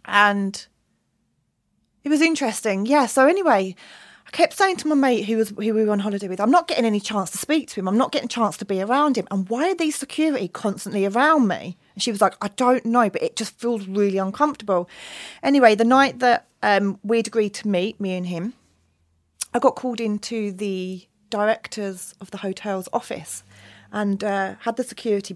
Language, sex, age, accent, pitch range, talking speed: English, female, 30-49, British, 175-235 Hz, 205 wpm